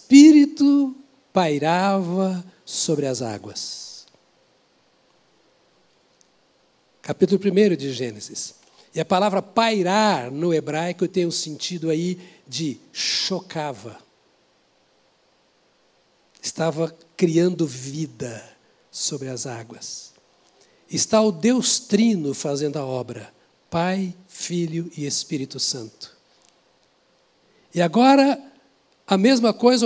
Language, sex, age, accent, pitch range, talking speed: Portuguese, male, 60-79, Brazilian, 165-245 Hz, 90 wpm